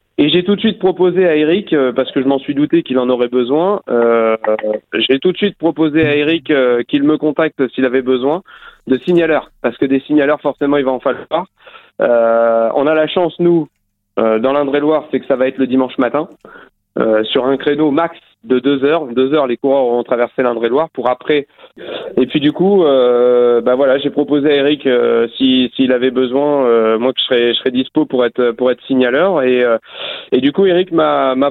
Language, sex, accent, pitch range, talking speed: French, male, French, 125-150 Hz, 220 wpm